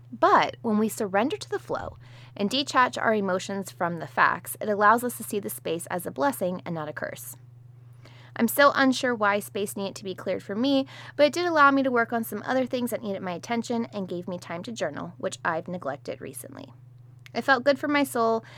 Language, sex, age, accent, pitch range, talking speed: English, female, 20-39, American, 170-235 Hz, 225 wpm